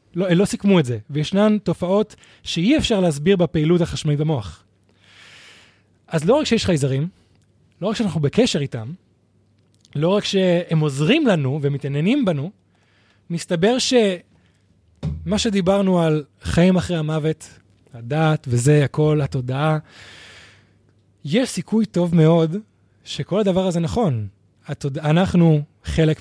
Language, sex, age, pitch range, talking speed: Hebrew, male, 20-39, 125-165 Hz, 115 wpm